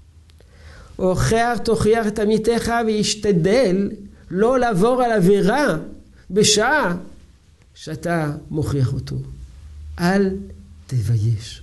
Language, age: Hebrew, 50-69